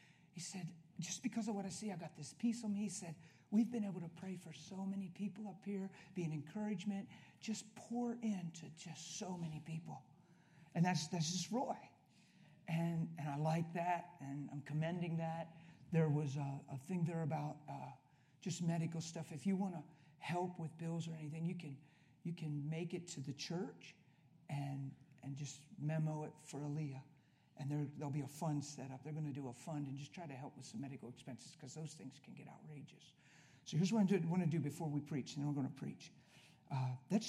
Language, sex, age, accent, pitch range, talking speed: English, male, 50-69, American, 145-175 Hz, 215 wpm